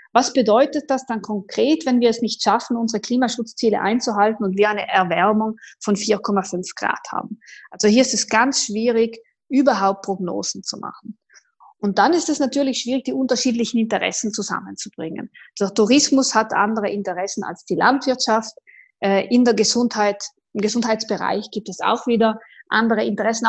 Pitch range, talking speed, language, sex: 205-260 Hz, 155 wpm, English, female